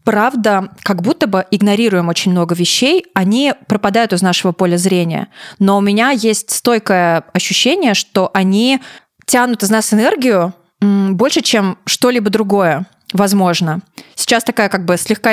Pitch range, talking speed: 180-220 Hz, 140 wpm